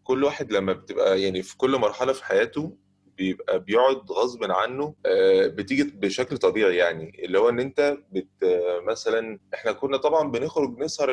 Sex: male